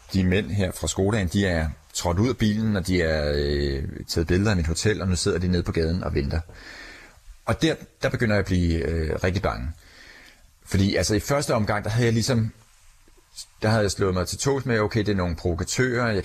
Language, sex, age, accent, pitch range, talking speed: Danish, male, 30-49, native, 85-105 Hz, 230 wpm